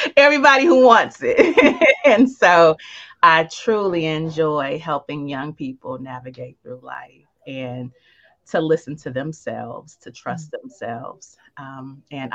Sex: female